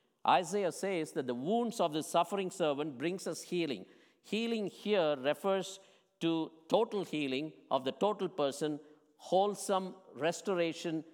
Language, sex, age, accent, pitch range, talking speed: English, male, 50-69, Indian, 145-185 Hz, 130 wpm